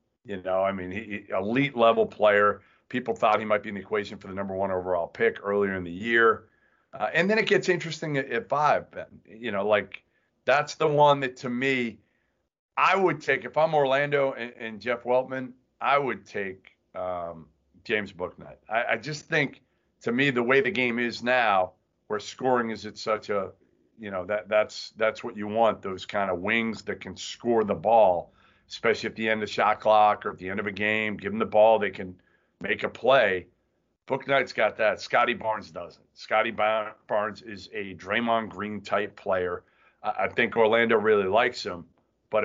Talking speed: 200 wpm